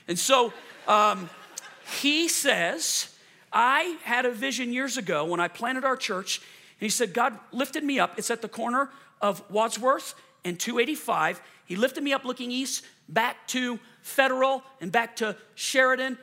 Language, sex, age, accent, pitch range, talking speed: English, male, 40-59, American, 200-245 Hz, 165 wpm